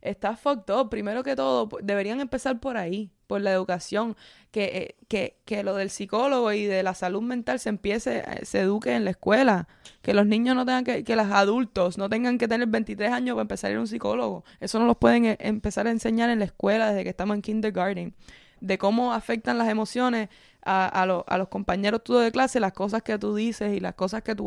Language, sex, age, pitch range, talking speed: Spanish, female, 20-39, 195-230 Hz, 230 wpm